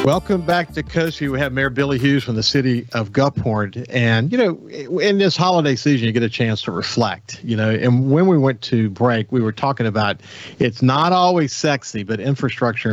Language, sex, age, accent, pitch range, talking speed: English, male, 50-69, American, 110-140 Hz, 210 wpm